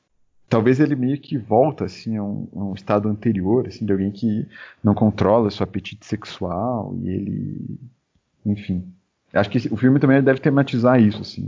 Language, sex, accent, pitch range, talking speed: Portuguese, male, Brazilian, 100-125 Hz, 175 wpm